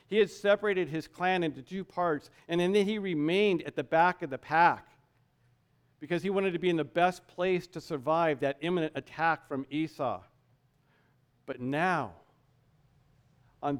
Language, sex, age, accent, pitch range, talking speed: English, male, 50-69, American, 150-200 Hz, 160 wpm